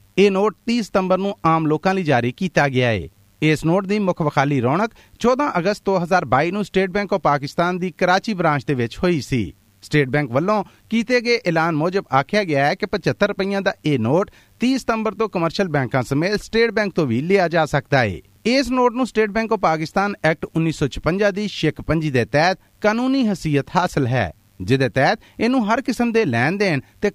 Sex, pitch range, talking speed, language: male, 140-205 Hz, 130 wpm, Punjabi